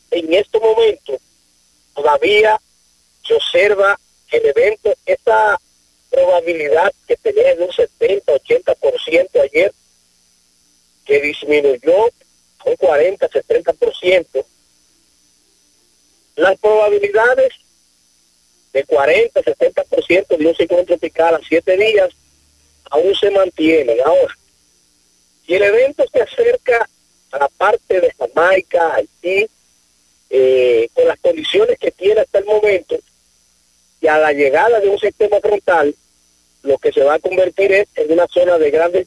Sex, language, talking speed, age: male, Spanish, 115 wpm, 40-59